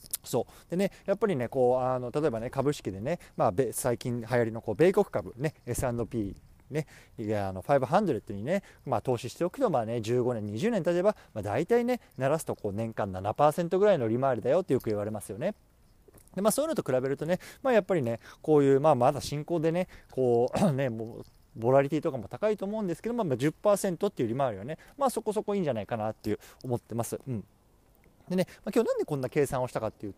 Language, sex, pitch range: Japanese, male, 115-185 Hz